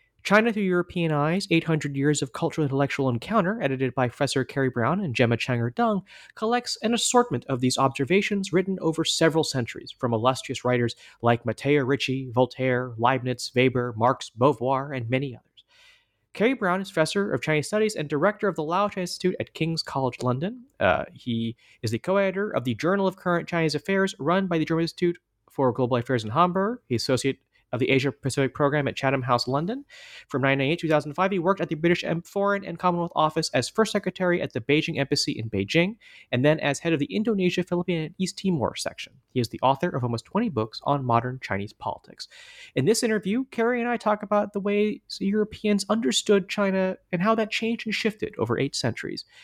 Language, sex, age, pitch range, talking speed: English, male, 30-49, 130-195 Hz, 195 wpm